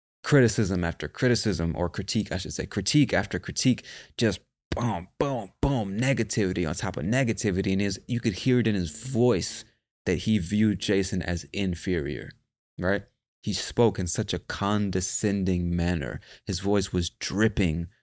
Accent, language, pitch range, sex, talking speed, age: American, English, 90-110 Hz, male, 155 wpm, 20-39